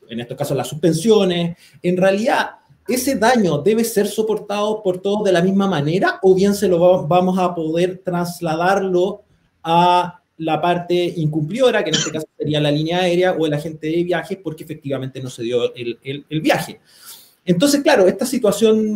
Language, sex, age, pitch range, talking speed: Spanish, male, 30-49, 155-195 Hz, 175 wpm